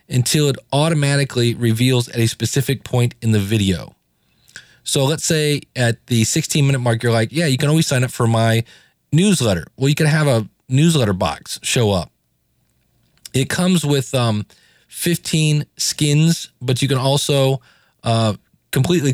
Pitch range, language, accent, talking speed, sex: 120-150 Hz, English, American, 160 wpm, male